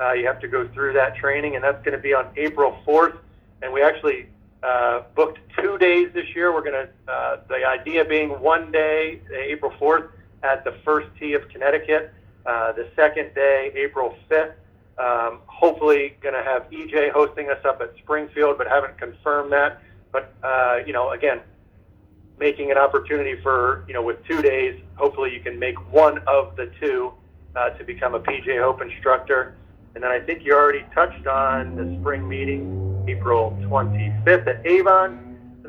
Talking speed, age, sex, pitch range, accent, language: 175 wpm, 40-59, male, 120-155 Hz, American, English